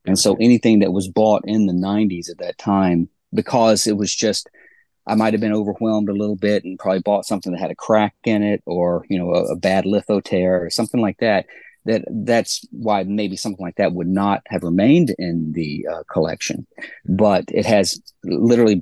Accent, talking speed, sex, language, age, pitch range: American, 205 wpm, male, English, 40-59, 90-110 Hz